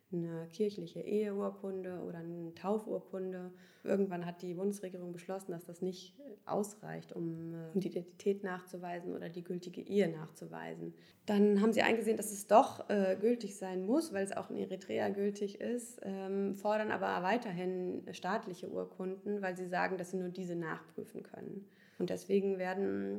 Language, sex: German, female